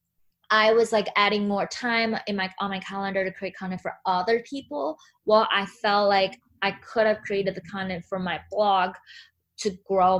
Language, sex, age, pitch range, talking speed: English, female, 20-39, 185-220 Hz, 190 wpm